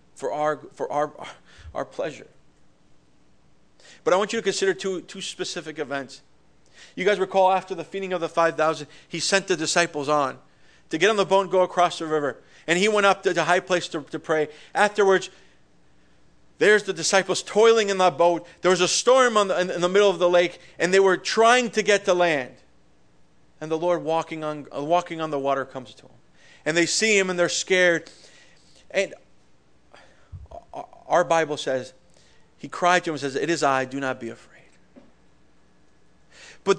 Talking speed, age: 190 wpm, 40-59